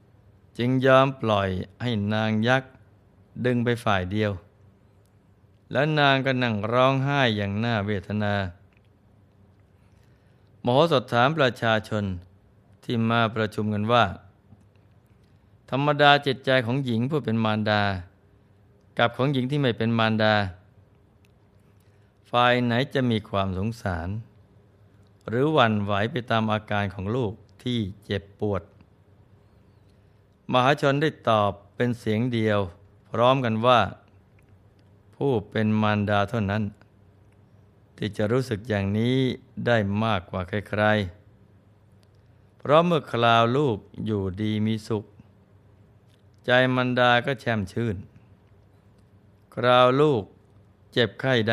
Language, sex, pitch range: Thai, male, 100-120 Hz